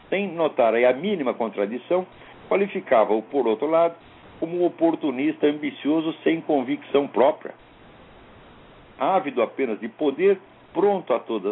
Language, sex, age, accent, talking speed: Portuguese, male, 60-79, Brazilian, 125 wpm